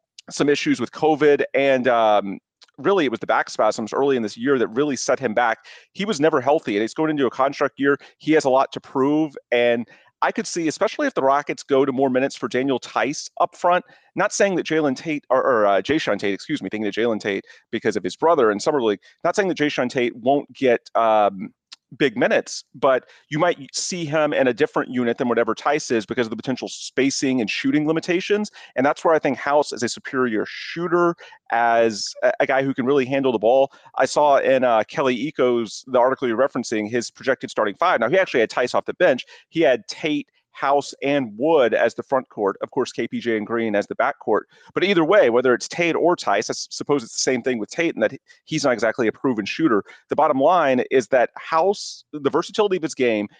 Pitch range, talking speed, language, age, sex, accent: 120-160 Hz, 230 wpm, English, 30-49, male, American